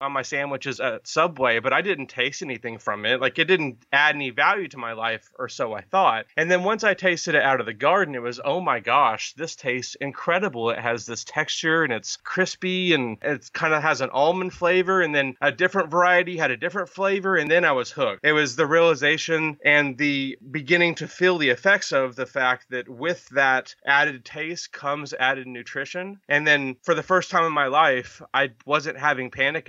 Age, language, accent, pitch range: 30-49, English, American, 125-165 Hz